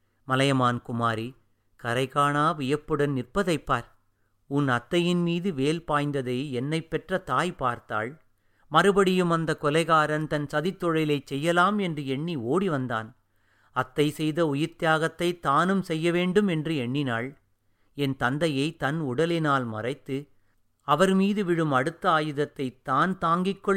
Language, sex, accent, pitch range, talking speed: Tamil, male, native, 125-160 Hz, 115 wpm